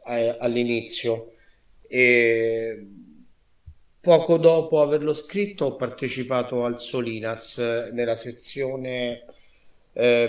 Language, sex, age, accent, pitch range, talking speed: Italian, male, 30-49, native, 115-130 Hz, 75 wpm